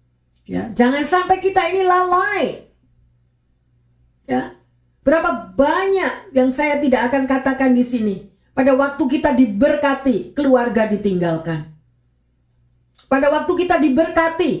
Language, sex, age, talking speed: Indonesian, female, 50-69, 105 wpm